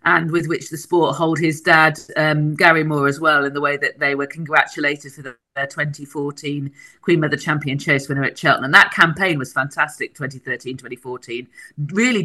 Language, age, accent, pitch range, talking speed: English, 40-59, British, 140-165 Hz, 180 wpm